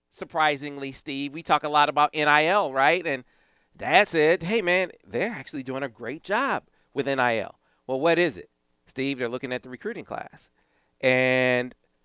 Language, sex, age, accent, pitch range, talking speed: English, male, 40-59, American, 130-165 Hz, 170 wpm